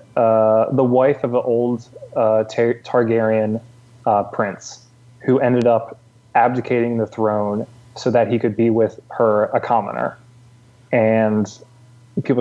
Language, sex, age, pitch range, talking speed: English, male, 20-39, 115-130 Hz, 130 wpm